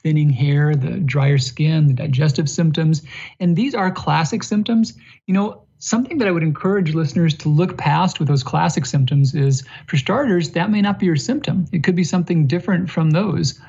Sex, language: male, English